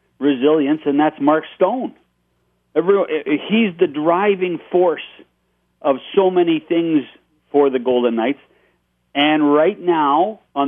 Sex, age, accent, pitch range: male, 60-79, American, 145-210 Hz